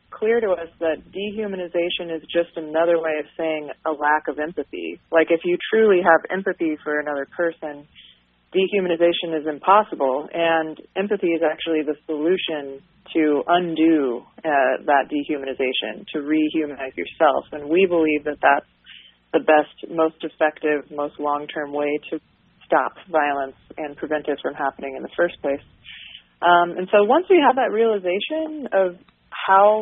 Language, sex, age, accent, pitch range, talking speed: English, female, 30-49, American, 150-175 Hz, 155 wpm